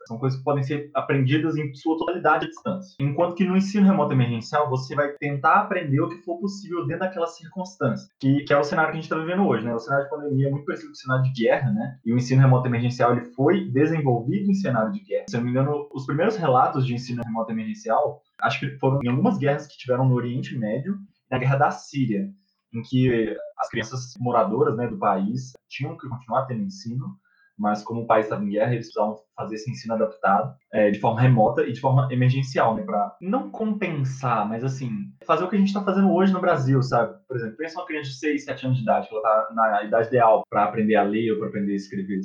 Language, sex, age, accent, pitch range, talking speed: Portuguese, male, 20-39, Brazilian, 120-170 Hz, 235 wpm